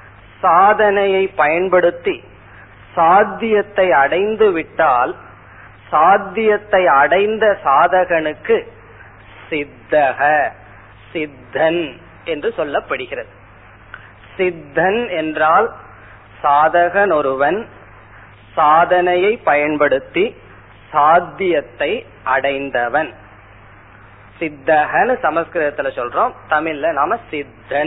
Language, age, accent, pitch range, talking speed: Tamil, 30-49, native, 110-180 Hz, 55 wpm